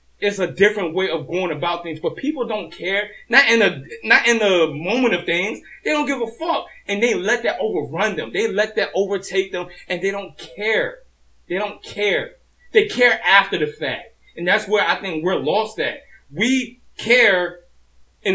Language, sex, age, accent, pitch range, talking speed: English, male, 20-39, American, 180-240 Hz, 195 wpm